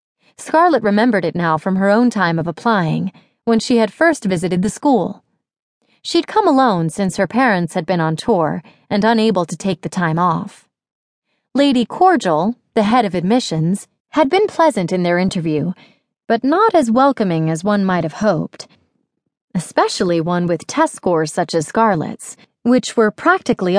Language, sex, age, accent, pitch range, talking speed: English, female, 30-49, American, 175-250 Hz, 165 wpm